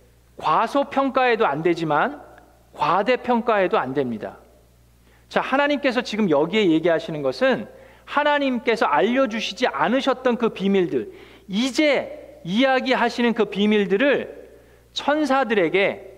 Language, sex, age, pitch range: Korean, male, 40-59, 160-255 Hz